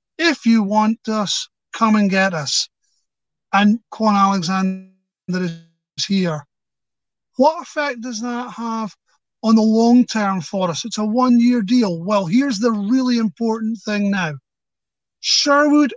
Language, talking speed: English, 135 wpm